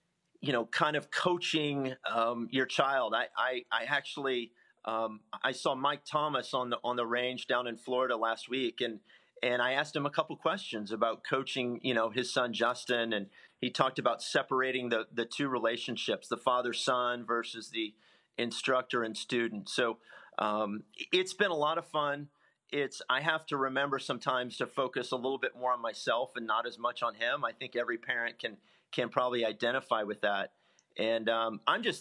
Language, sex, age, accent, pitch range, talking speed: English, male, 40-59, American, 115-140 Hz, 190 wpm